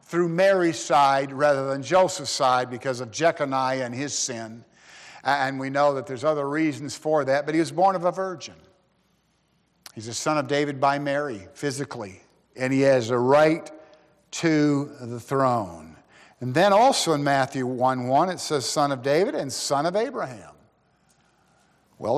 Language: English